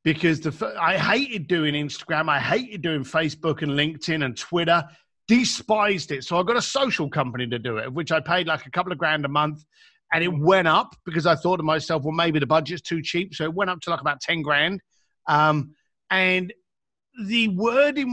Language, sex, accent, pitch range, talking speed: English, male, British, 155-205 Hz, 210 wpm